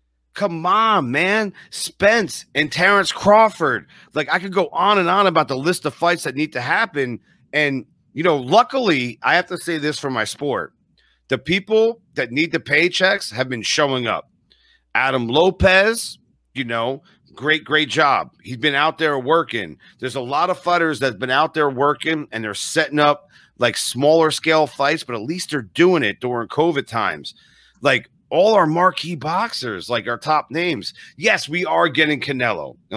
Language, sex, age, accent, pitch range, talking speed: English, male, 40-59, American, 135-180 Hz, 180 wpm